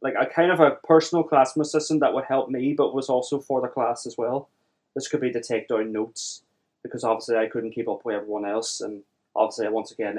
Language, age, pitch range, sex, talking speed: English, 20-39, 110-130 Hz, male, 235 wpm